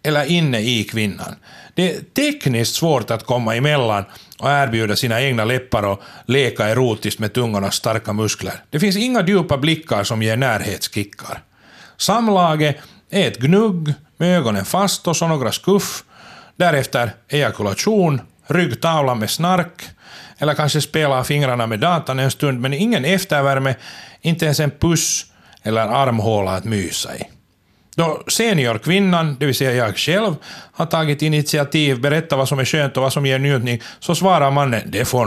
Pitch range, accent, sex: 115-165 Hz, native, male